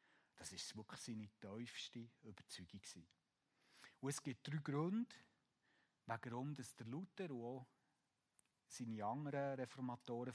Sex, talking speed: male, 110 wpm